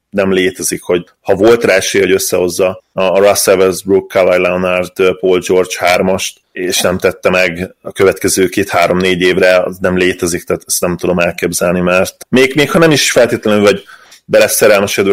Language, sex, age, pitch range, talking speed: Hungarian, male, 20-39, 90-100 Hz, 165 wpm